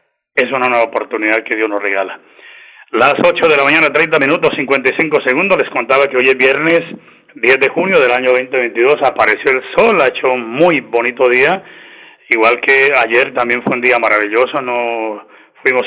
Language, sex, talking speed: Spanish, male, 180 wpm